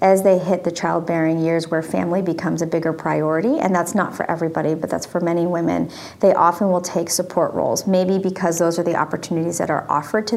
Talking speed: 220 wpm